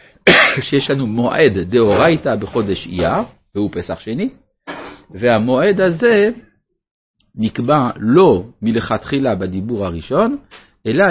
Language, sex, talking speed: Hebrew, male, 90 wpm